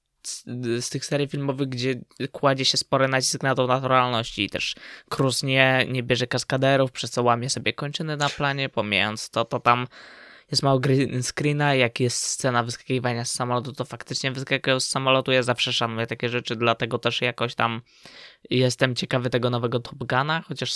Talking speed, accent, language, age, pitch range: 175 wpm, native, Polish, 20-39, 120-140 Hz